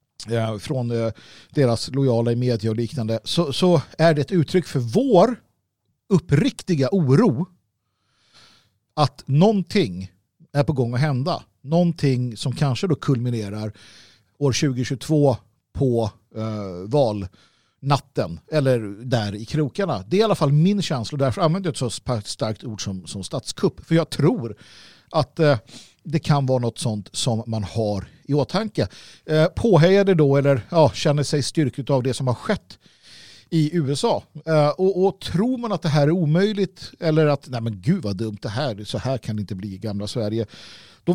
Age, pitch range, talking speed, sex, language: 50-69, 115-165 Hz, 170 wpm, male, Swedish